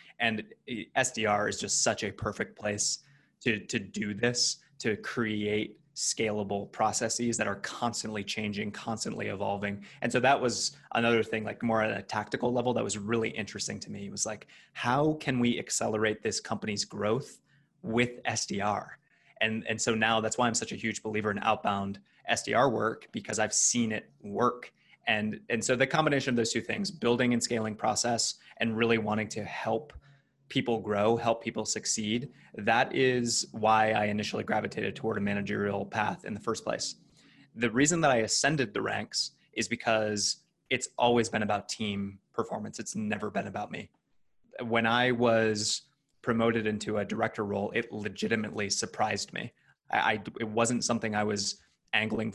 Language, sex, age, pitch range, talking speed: English, male, 20-39, 105-120 Hz, 170 wpm